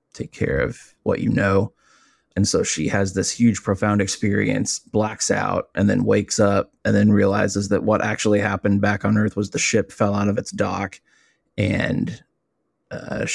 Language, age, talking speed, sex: English, 20-39, 180 wpm, male